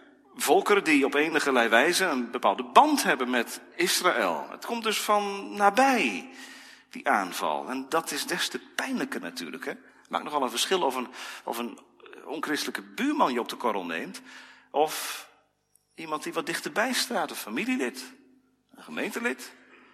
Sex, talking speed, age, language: male, 155 wpm, 40-59, Dutch